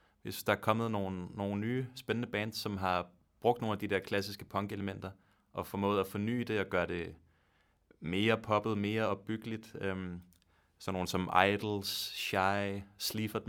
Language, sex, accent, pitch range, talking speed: Danish, male, native, 95-110 Hz, 170 wpm